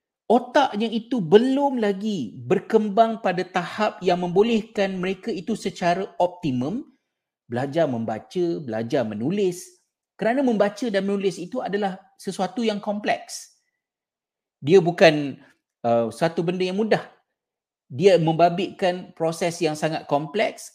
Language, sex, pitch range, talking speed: Malay, male, 140-205 Hz, 115 wpm